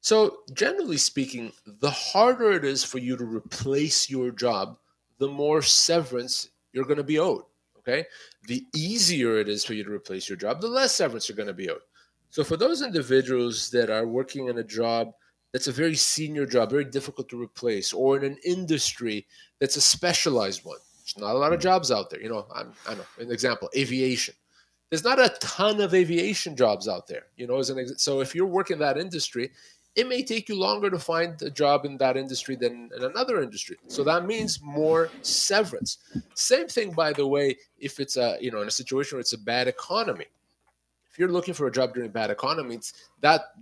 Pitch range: 125-175 Hz